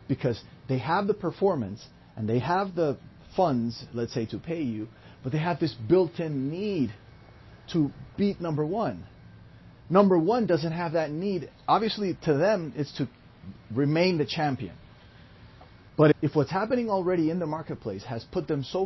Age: 30-49